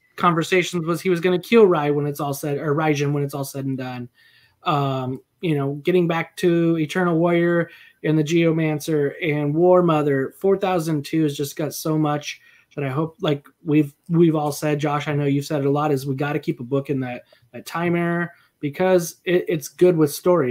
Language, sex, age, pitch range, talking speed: English, male, 20-39, 140-170 Hz, 215 wpm